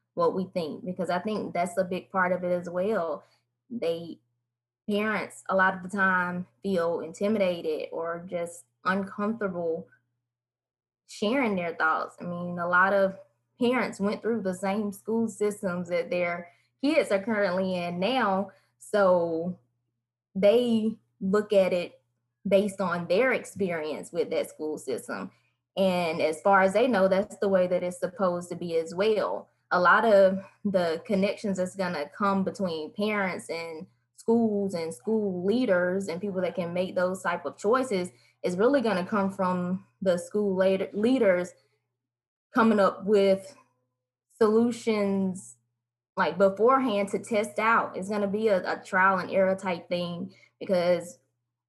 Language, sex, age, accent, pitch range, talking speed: English, female, 20-39, American, 170-205 Hz, 155 wpm